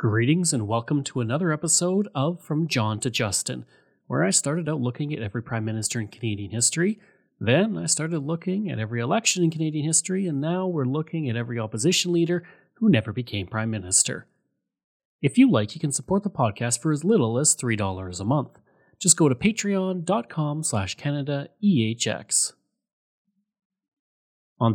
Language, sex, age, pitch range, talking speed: English, male, 30-49, 120-180 Hz, 165 wpm